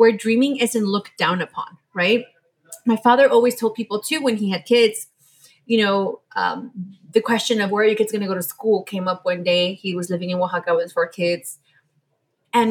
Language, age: English, 20-39